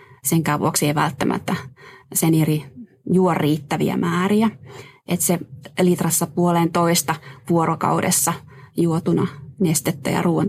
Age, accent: 20-39, native